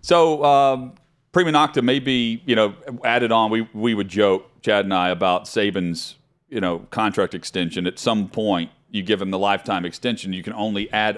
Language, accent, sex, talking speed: English, American, male, 190 wpm